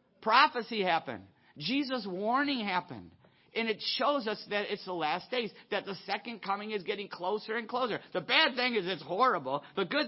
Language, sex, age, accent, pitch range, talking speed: English, male, 50-69, American, 155-225 Hz, 185 wpm